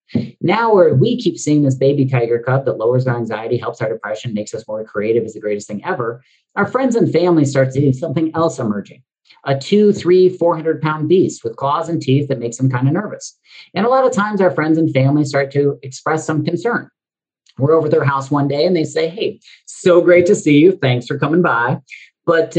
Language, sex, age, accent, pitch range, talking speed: English, male, 40-59, American, 130-180 Hz, 230 wpm